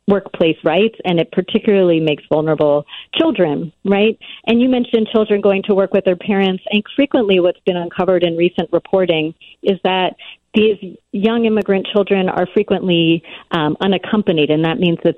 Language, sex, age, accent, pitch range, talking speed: English, female, 40-59, American, 160-195 Hz, 160 wpm